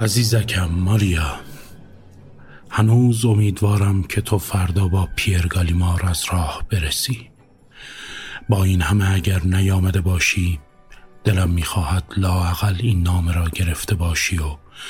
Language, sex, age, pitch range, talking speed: Persian, male, 50-69, 85-105 Hz, 110 wpm